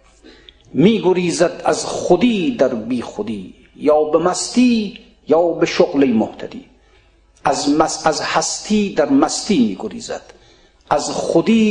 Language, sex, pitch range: Persian, male, 165-225 Hz